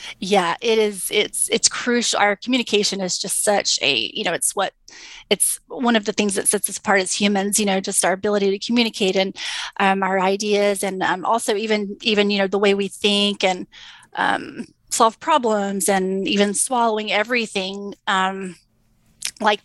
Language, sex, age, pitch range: English, female, 30-49, 200-235 Hz